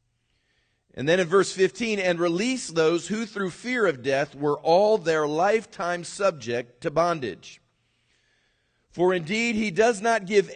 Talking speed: 150 wpm